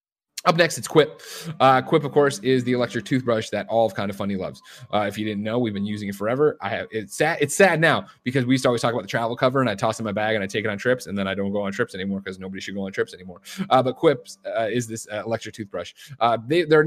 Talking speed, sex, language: 305 wpm, male, English